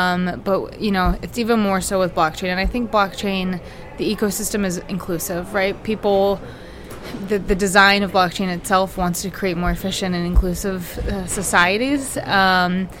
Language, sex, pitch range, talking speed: English, female, 180-205 Hz, 165 wpm